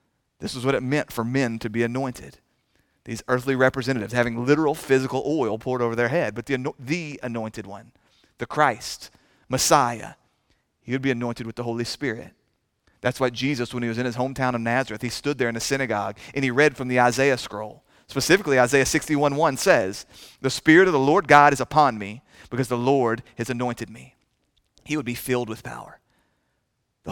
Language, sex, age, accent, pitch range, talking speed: English, male, 30-49, American, 120-150 Hz, 190 wpm